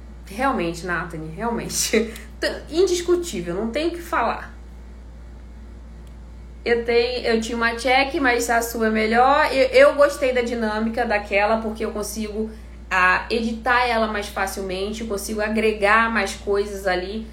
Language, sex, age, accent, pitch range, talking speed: Portuguese, female, 20-39, Brazilian, 190-230 Hz, 130 wpm